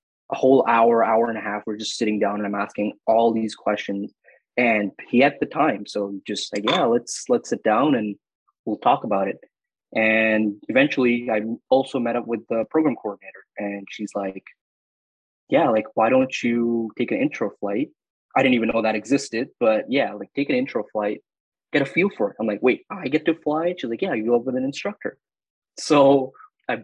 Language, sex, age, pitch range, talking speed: English, male, 20-39, 105-120 Hz, 210 wpm